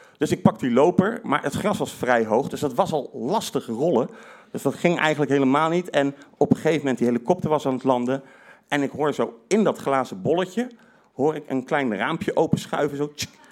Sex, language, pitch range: male, Dutch, 120-185 Hz